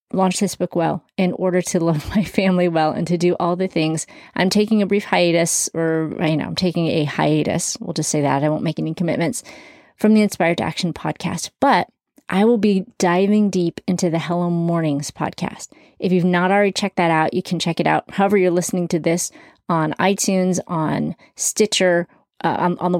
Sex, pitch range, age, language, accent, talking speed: female, 170-210 Hz, 30-49, English, American, 205 wpm